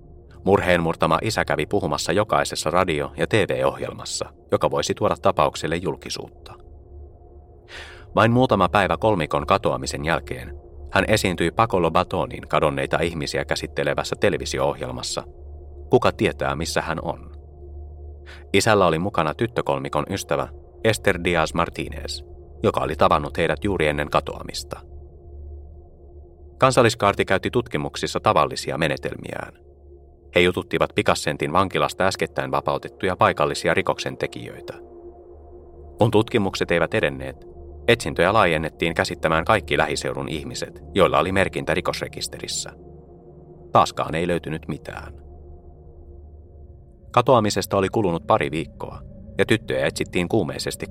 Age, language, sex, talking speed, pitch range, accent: 30-49, Finnish, male, 105 wpm, 70-95 Hz, native